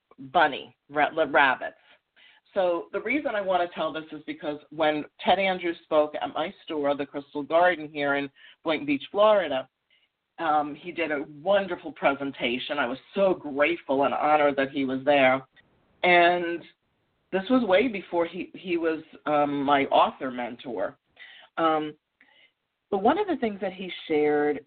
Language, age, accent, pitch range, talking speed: English, 40-59, American, 145-185 Hz, 155 wpm